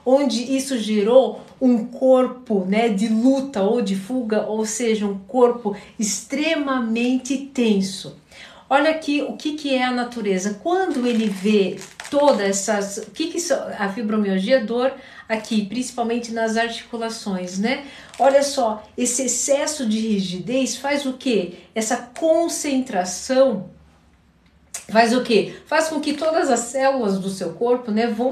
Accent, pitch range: Brazilian, 205-265 Hz